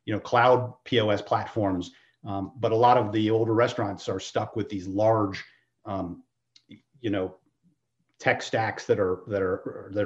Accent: American